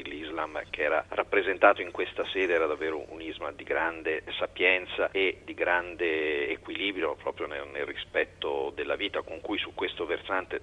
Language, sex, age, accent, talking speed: Italian, male, 40-59, native, 150 wpm